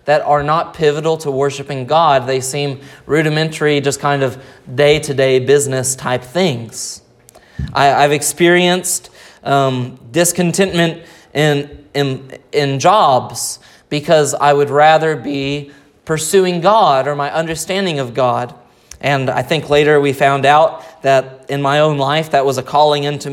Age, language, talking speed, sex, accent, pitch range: 20-39, English, 140 wpm, male, American, 145-190 Hz